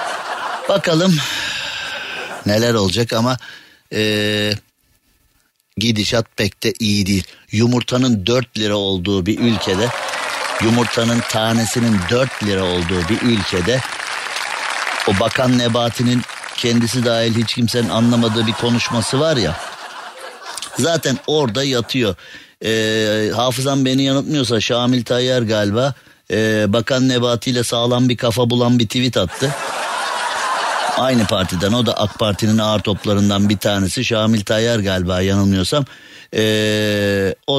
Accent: native